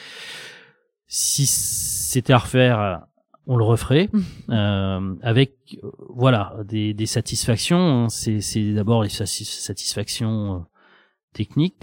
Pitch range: 95-115 Hz